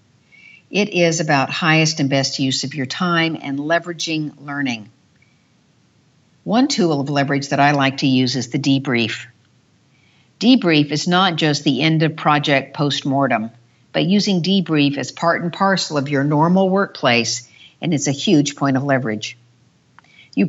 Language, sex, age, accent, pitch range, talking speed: English, female, 50-69, American, 135-180 Hz, 155 wpm